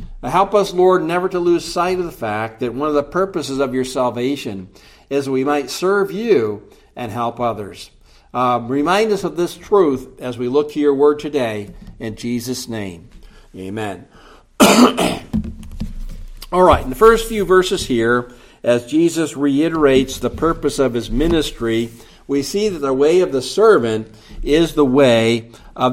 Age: 60-79